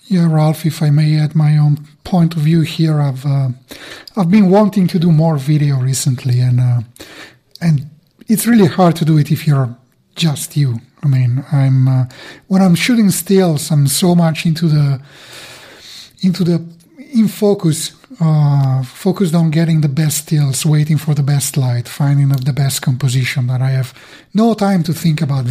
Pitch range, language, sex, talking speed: 140-180 Hz, English, male, 180 wpm